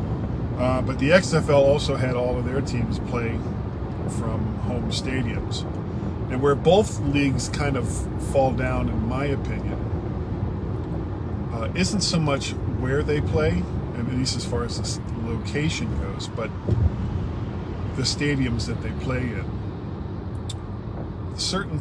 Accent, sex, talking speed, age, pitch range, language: American, male, 130 wpm, 40-59, 105-130 Hz, English